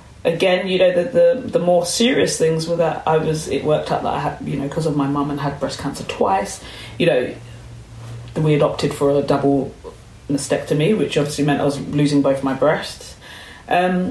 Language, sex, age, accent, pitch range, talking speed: English, female, 30-49, British, 140-220 Hz, 205 wpm